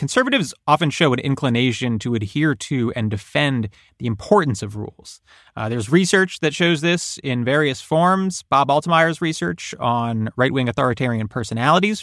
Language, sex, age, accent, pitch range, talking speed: English, male, 30-49, American, 120-165 Hz, 150 wpm